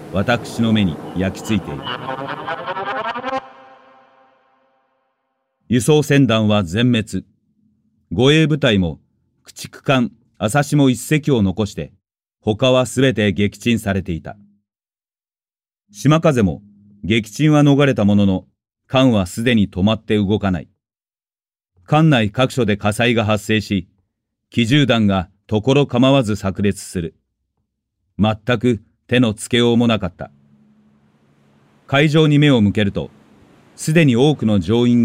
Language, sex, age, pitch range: Japanese, male, 40-59, 100-130 Hz